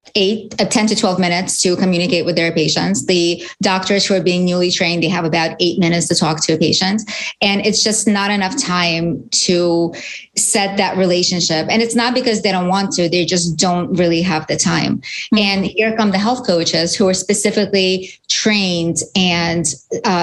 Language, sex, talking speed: English, female, 195 wpm